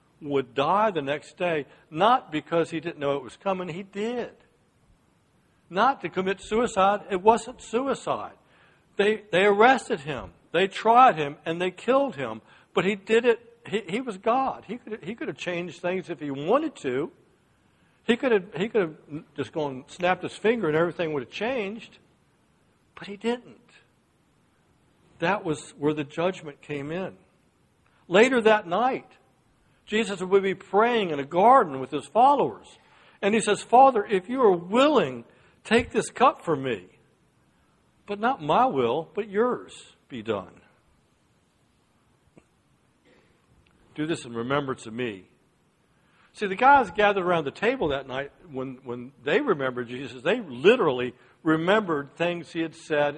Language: English